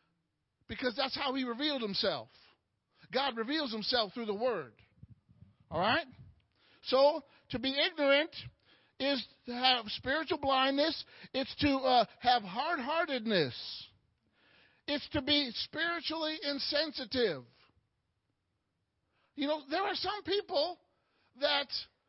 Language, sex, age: English, male, 50-69